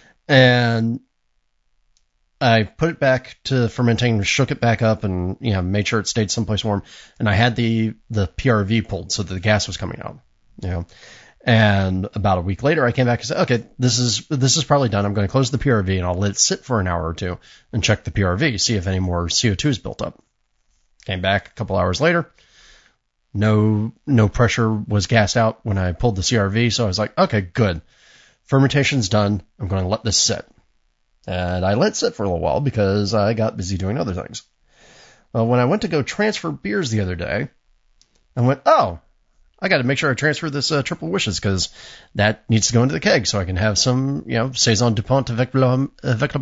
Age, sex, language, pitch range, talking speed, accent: 30-49, male, English, 95-130 Hz, 220 wpm, American